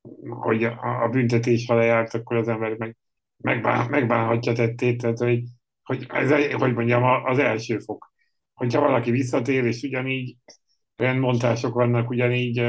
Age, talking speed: 70-89, 135 wpm